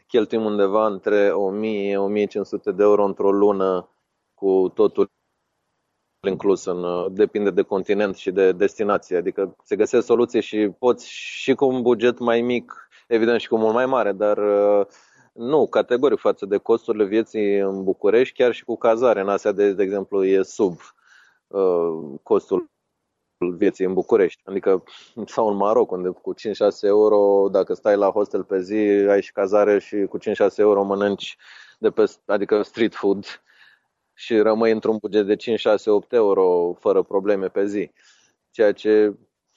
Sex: male